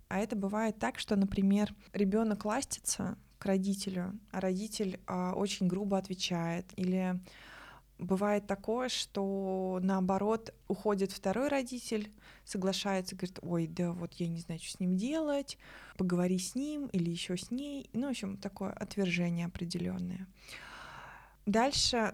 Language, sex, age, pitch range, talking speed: Russian, female, 20-39, 185-210 Hz, 135 wpm